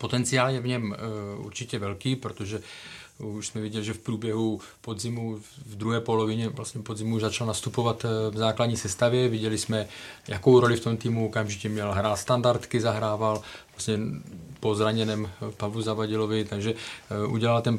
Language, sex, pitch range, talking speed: Czech, male, 110-125 Hz, 150 wpm